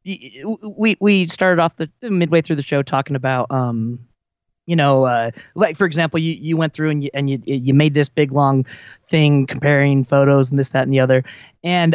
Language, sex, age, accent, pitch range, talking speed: English, male, 20-39, American, 135-175 Hz, 205 wpm